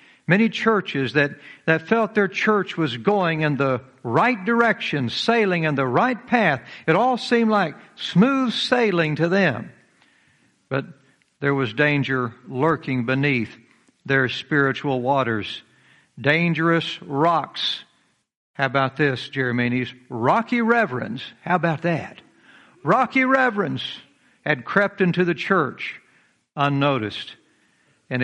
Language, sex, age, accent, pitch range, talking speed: English, male, 60-79, American, 125-175 Hz, 115 wpm